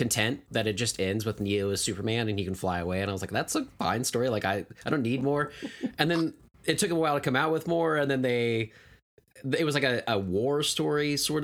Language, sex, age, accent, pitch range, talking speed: English, male, 20-39, American, 100-135 Hz, 260 wpm